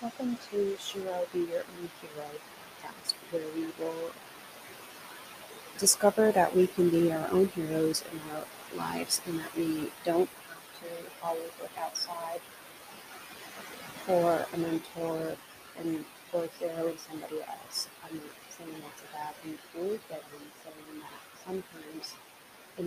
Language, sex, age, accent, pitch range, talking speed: English, female, 30-49, American, 165-185 Hz, 130 wpm